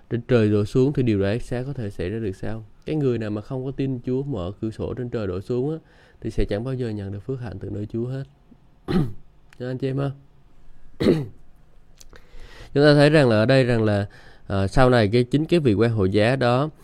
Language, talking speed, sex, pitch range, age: Vietnamese, 235 wpm, male, 100-125 Hz, 20-39